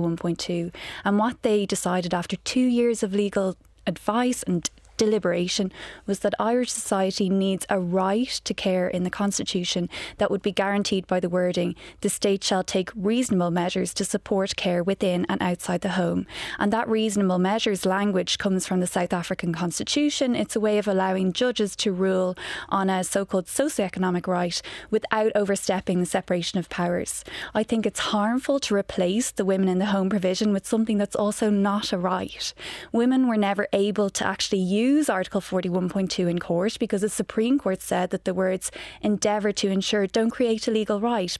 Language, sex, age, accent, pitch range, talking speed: English, female, 20-39, Irish, 185-220 Hz, 175 wpm